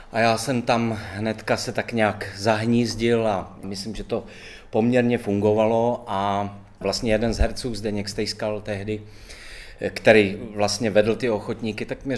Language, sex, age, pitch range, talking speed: Czech, male, 30-49, 105-125 Hz, 150 wpm